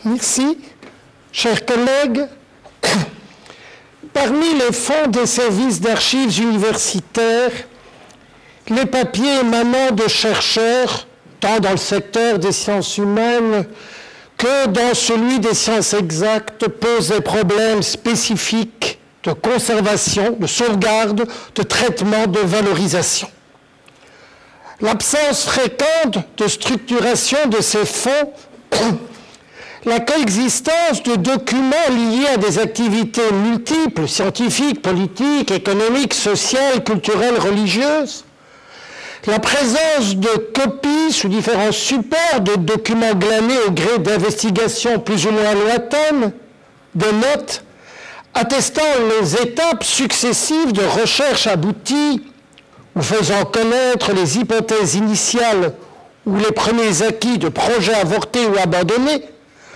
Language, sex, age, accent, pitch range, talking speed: French, male, 60-79, French, 210-255 Hz, 105 wpm